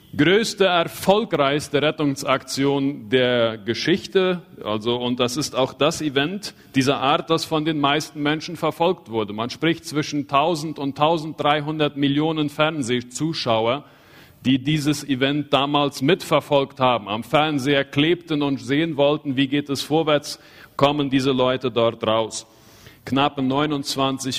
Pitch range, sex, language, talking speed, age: 120-150 Hz, male, Spanish, 130 wpm, 50-69